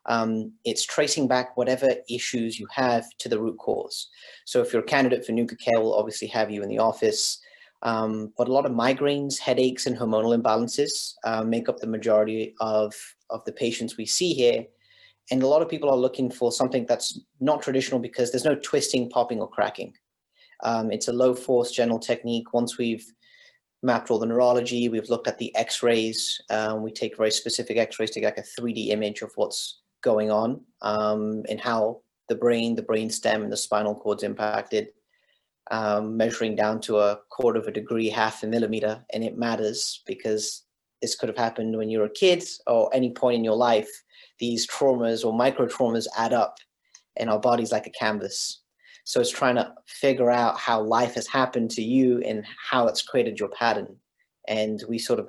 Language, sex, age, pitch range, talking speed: English, male, 30-49, 110-125 Hz, 195 wpm